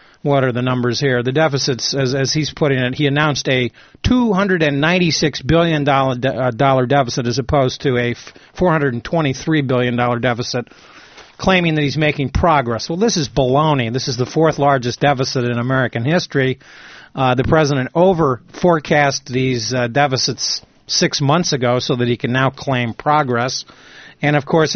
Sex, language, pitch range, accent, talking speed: male, English, 125-150 Hz, American, 160 wpm